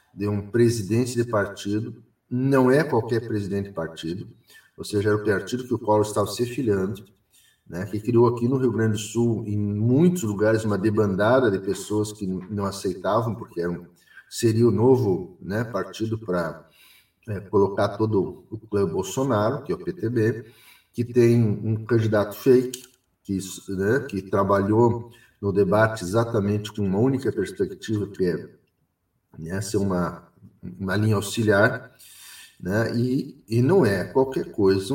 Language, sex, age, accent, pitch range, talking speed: Portuguese, male, 50-69, Brazilian, 100-120 Hz, 160 wpm